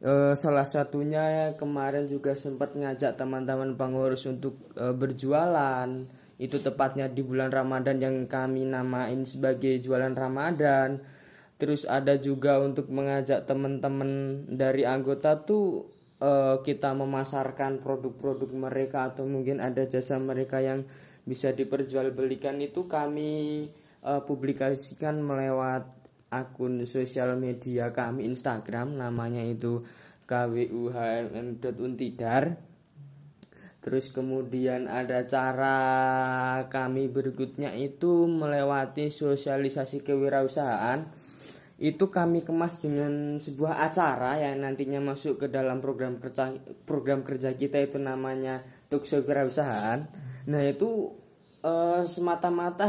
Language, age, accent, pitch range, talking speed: Indonesian, 10-29, native, 130-145 Hz, 100 wpm